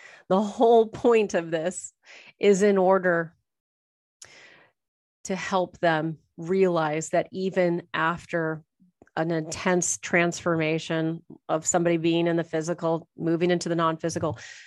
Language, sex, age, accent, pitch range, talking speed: English, female, 30-49, American, 170-205 Hz, 115 wpm